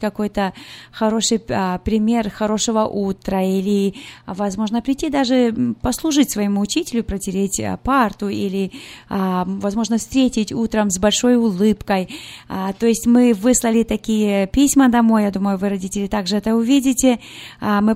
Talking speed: 120 wpm